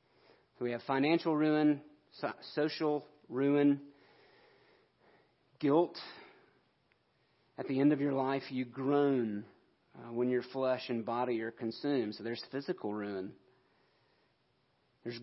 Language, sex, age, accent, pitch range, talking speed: English, male, 40-59, American, 115-140 Hz, 110 wpm